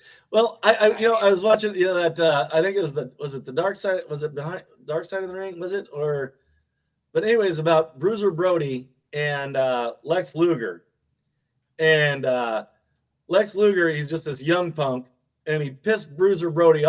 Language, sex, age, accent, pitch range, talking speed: English, male, 30-49, American, 155-210 Hz, 200 wpm